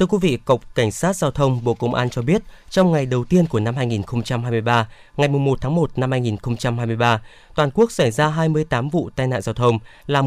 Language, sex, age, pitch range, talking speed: Vietnamese, male, 20-39, 115-155 Hz, 215 wpm